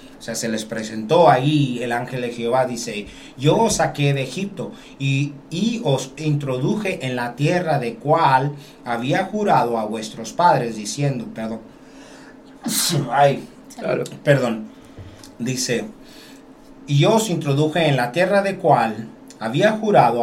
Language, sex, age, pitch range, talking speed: Spanish, male, 40-59, 115-160 Hz, 135 wpm